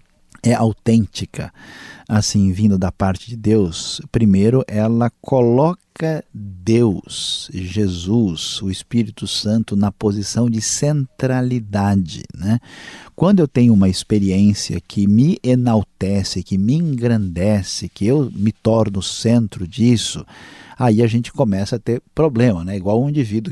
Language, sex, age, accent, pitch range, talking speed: Portuguese, male, 50-69, Brazilian, 95-120 Hz, 125 wpm